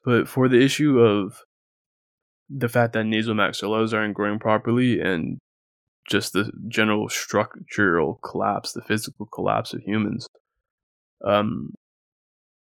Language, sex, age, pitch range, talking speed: English, male, 20-39, 105-120 Hz, 115 wpm